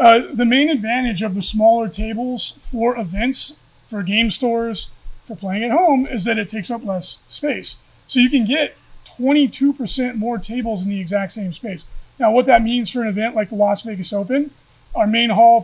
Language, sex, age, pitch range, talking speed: English, male, 30-49, 205-240 Hz, 195 wpm